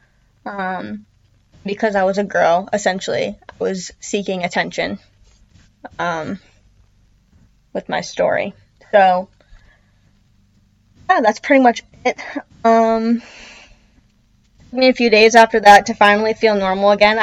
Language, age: English, 10-29